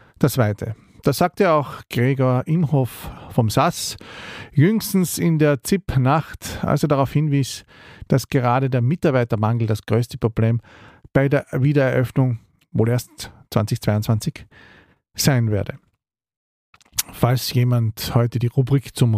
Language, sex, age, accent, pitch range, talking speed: German, male, 50-69, Austrian, 120-155 Hz, 120 wpm